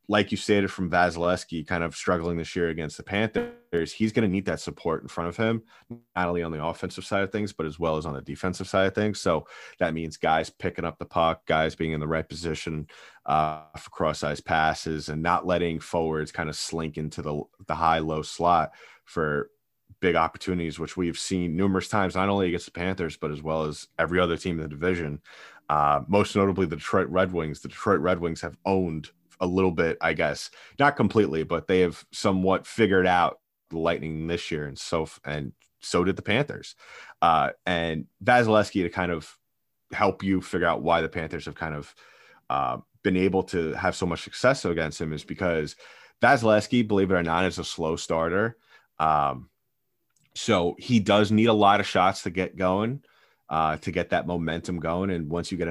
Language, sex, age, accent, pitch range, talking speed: English, male, 20-39, American, 80-95 Hz, 205 wpm